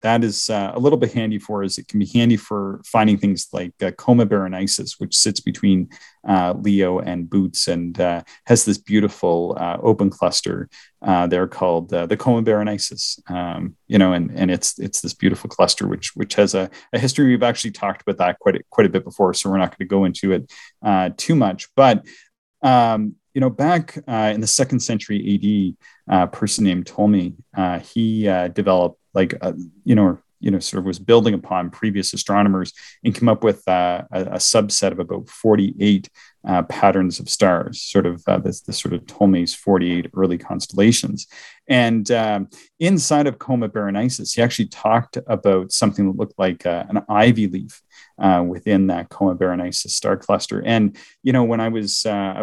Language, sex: English, male